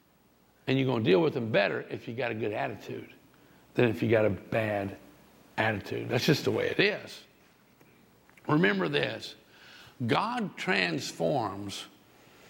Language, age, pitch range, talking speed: English, 60-79, 105-150 Hz, 150 wpm